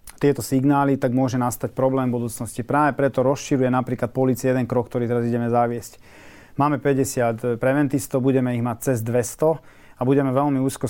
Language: Slovak